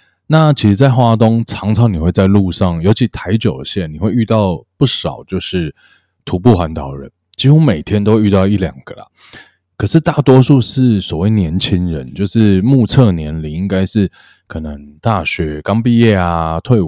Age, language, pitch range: 20-39, Chinese, 85-115 Hz